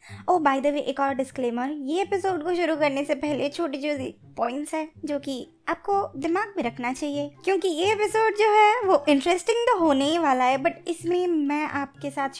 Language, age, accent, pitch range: Hindi, 20-39, native, 260-340 Hz